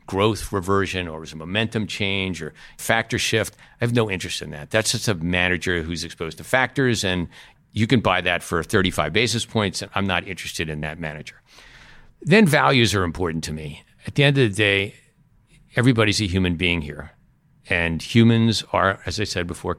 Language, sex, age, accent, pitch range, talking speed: English, male, 50-69, American, 85-115 Hz, 195 wpm